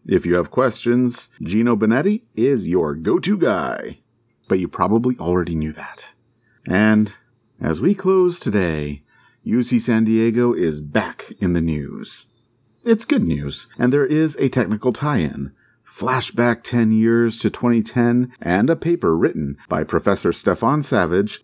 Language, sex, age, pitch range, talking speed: English, male, 40-59, 90-135 Hz, 145 wpm